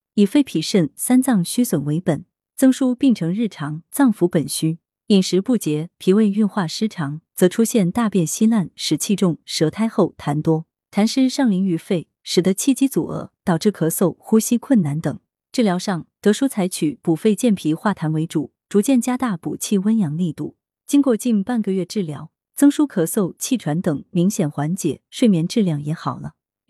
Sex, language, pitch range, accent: female, Chinese, 165-230 Hz, native